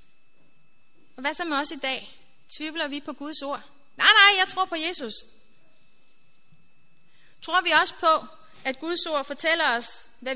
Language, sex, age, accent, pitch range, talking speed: Danish, female, 30-49, native, 260-325 Hz, 160 wpm